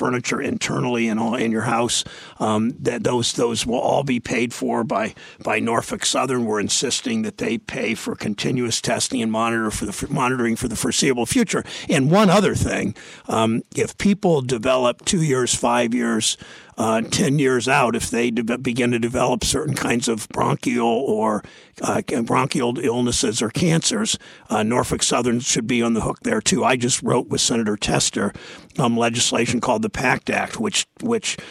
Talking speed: 175 wpm